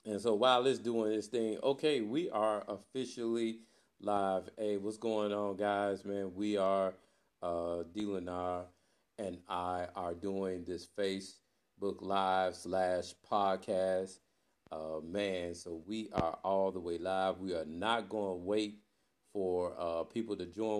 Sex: male